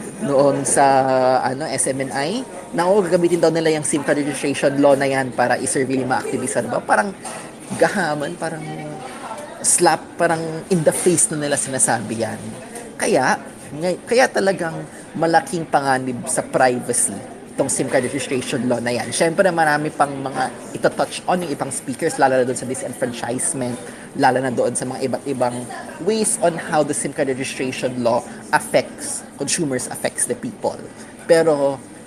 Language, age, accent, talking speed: English, 20-39, Filipino, 155 wpm